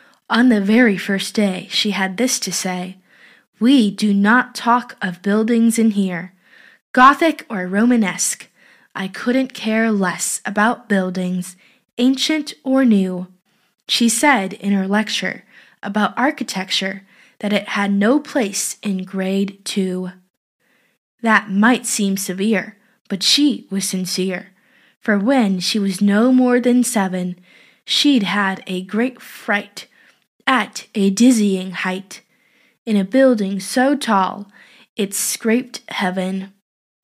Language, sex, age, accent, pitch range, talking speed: English, female, 10-29, American, 195-245 Hz, 125 wpm